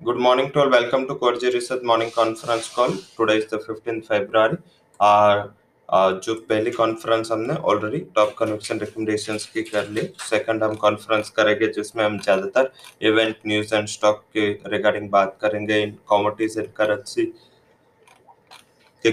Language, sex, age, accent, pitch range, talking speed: English, male, 20-39, Indian, 105-115 Hz, 160 wpm